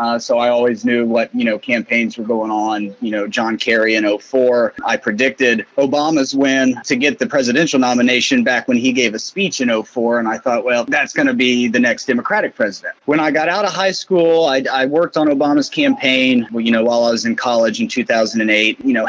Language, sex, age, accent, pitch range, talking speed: English, male, 30-49, American, 120-165 Hz, 225 wpm